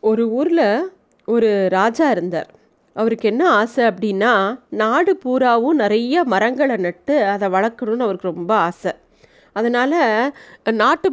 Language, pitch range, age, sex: Tamil, 215-280 Hz, 30-49, female